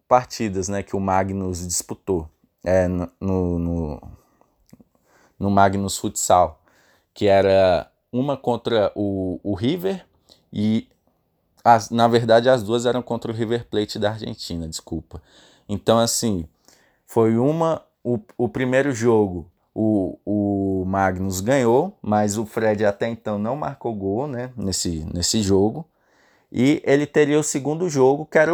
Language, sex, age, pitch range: Portuguese, male, 20-39, 95-125 Hz